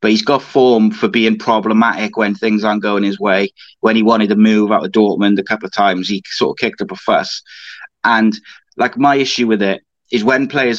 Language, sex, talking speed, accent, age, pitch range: English, male, 230 wpm, British, 30-49, 105-120 Hz